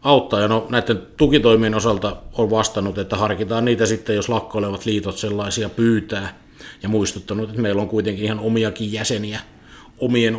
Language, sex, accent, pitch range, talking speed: Finnish, male, native, 105-120 Hz, 155 wpm